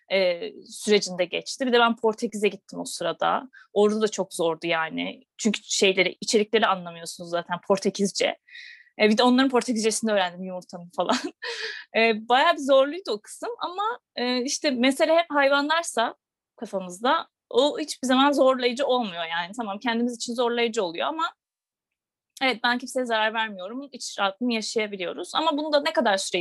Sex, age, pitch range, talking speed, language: female, 30-49, 210-280 Hz, 155 wpm, Turkish